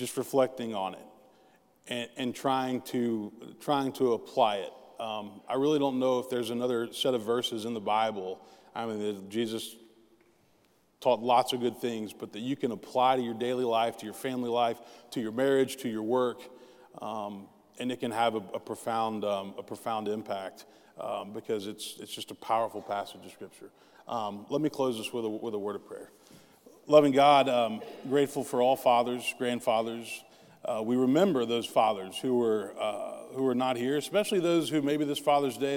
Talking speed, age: 195 wpm, 30-49